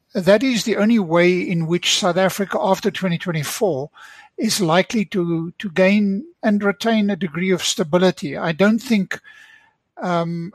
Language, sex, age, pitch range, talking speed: English, male, 60-79, 170-210 Hz, 150 wpm